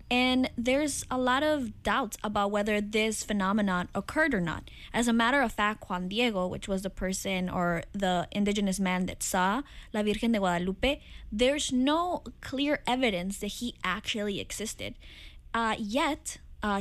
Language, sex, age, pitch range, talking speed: English, female, 10-29, 190-235 Hz, 160 wpm